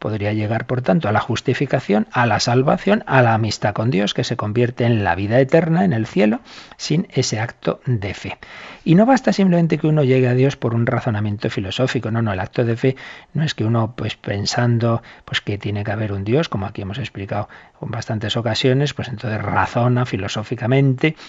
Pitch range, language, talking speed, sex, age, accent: 110-135 Hz, Spanish, 205 wpm, male, 40-59, Spanish